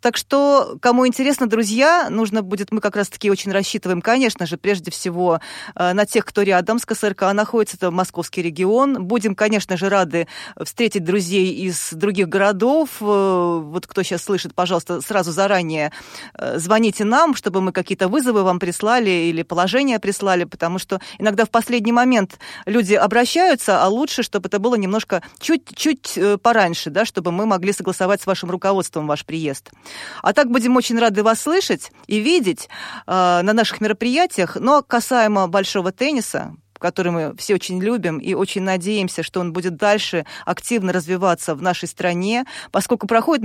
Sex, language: female, Russian